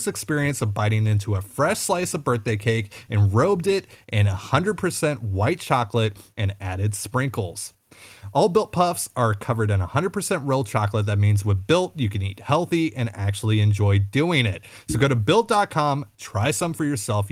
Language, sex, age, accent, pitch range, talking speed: English, male, 30-49, American, 105-150 Hz, 175 wpm